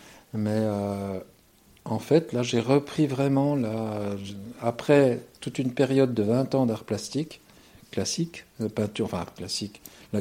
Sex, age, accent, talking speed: male, 50-69, French, 140 wpm